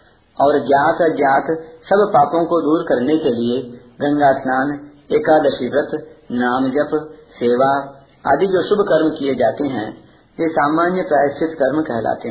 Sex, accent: male, native